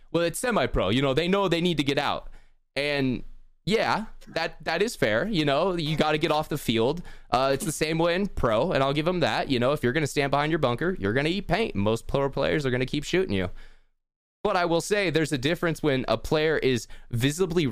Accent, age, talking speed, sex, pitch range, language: American, 20-39, 255 wpm, male, 110-155 Hz, English